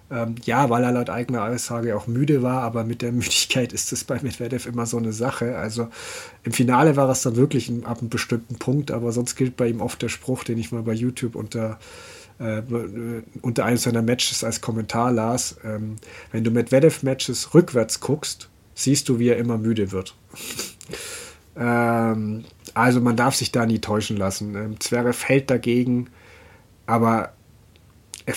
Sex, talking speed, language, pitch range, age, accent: male, 175 wpm, German, 115-125 Hz, 40-59, German